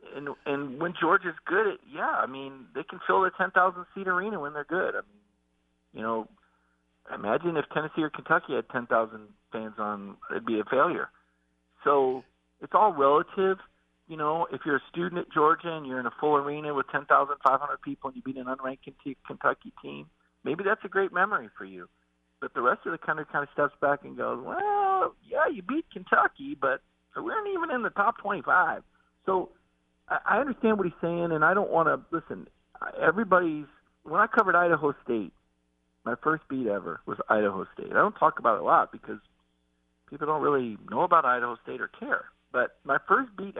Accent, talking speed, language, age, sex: American, 195 wpm, English, 40-59, male